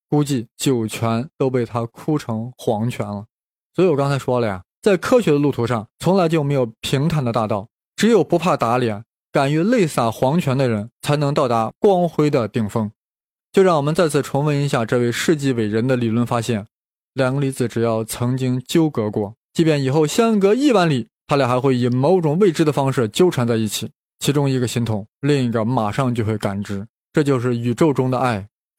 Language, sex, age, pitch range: Chinese, male, 20-39, 115-150 Hz